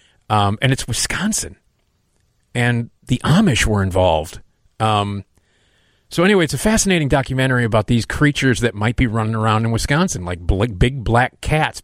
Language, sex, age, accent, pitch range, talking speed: English, male, 40-59, American, 100-125 Hz, 150 wpm